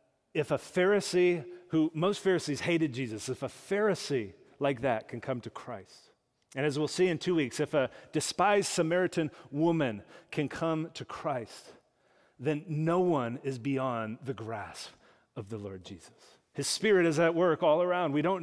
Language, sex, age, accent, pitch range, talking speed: English, male, 40-59, American, 120-155 Hz, 175 wpm